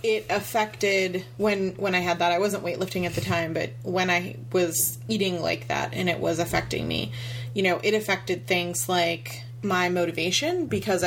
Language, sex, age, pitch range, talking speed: English, female, 30-49, 165-195 Hz, 185 wpm